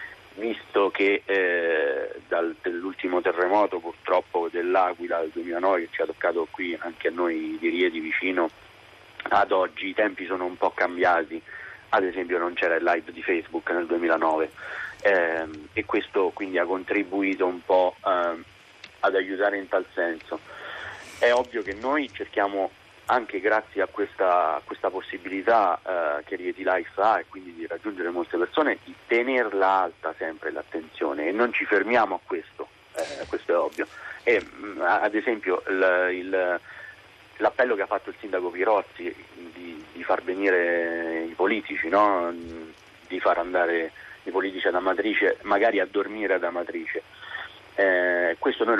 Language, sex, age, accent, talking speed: Italian, male, 40-59, native, 155 wpm